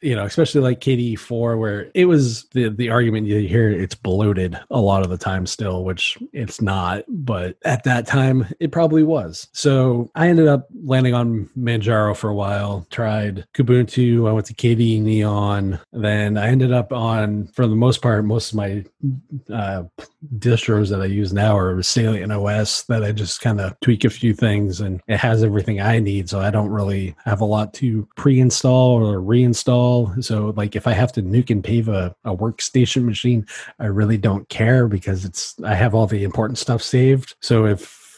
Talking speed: 195 wpm